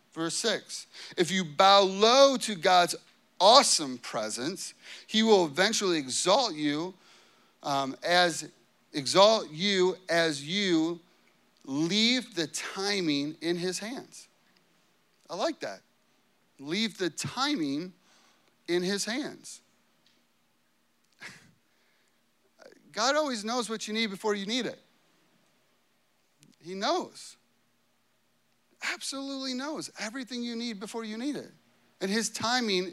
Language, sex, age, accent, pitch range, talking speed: English, male, 30-49, American, 150-220 Hz, 110 wpm